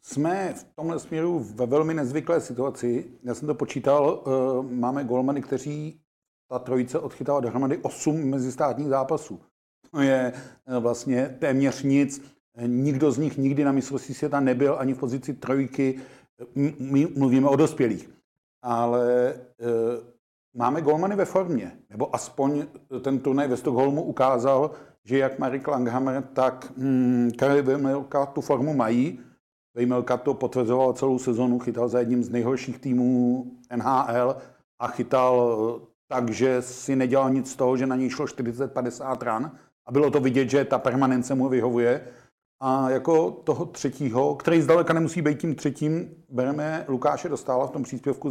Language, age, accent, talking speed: Czech, 50-69, native, 145 wpm